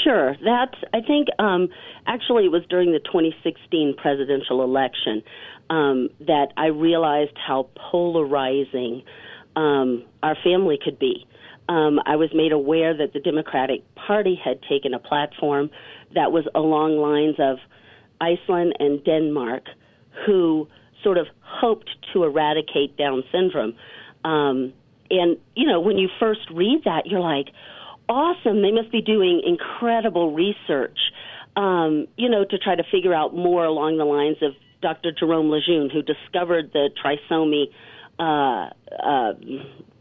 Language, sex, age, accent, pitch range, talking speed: English, female, 40-59, American, 145-195 Hz, 140 wpm